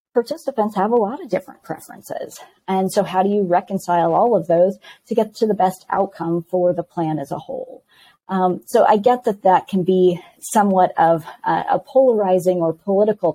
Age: 40-59